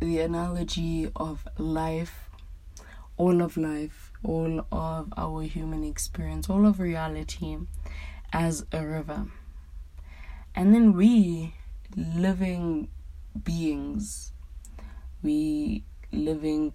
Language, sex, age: English, female, 20-39